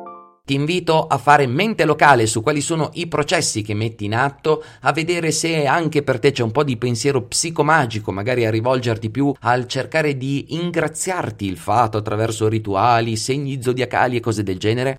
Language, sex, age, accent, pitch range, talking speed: Italian, male, 30-49, native, 110-150 Hz, 180 wpm